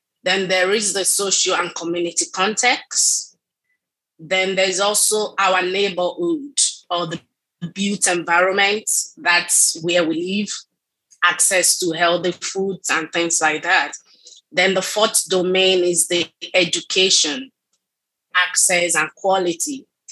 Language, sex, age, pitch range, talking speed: English, female, 20-39, 175-205 Hz, 115 wpm